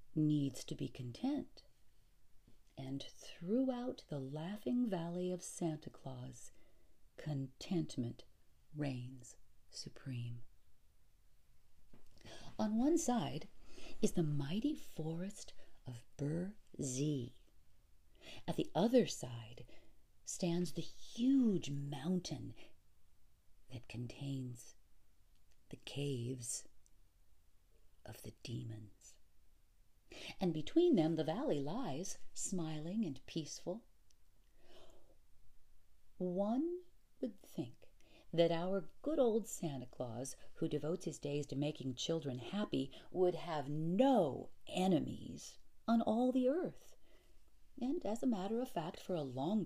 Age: 40-59